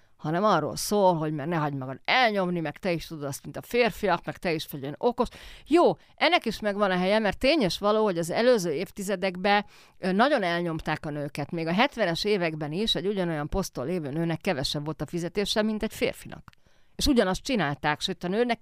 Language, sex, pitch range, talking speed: Hungarian, female, 155-200 Hz, 200 wpm